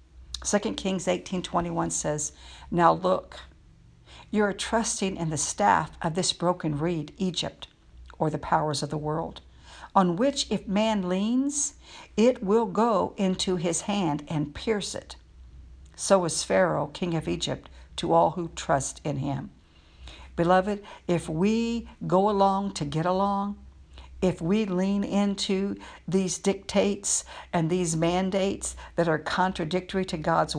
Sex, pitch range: female, 135-190 Hz